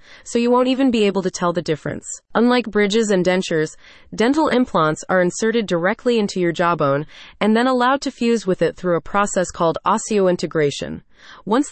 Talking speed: 180 wpm